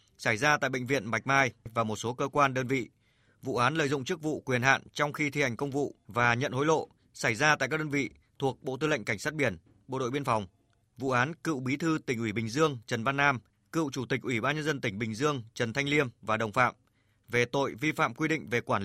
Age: 20-39